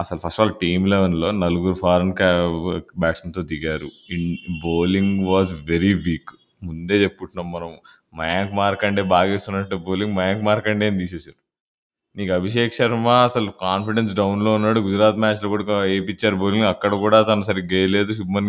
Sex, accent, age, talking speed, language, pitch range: male, native, 20-39, 145 wpm, Telugu, 95-120 Hz